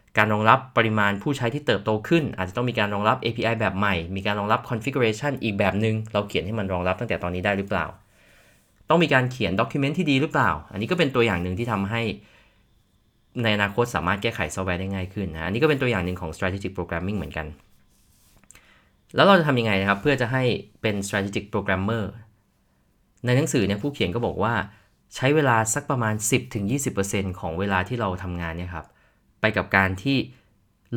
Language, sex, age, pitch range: Thai, male, 20-39, 95-115 Hz